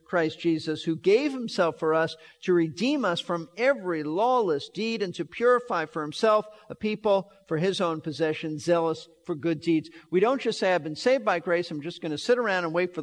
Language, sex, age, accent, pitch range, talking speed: English, male, 50-69, American, 165-225 Hz, 215 wpm